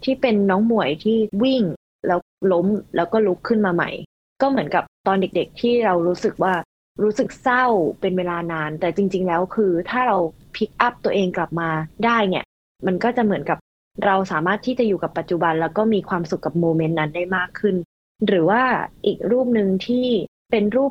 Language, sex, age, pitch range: Thai, female, 20-39, 170-215 Hz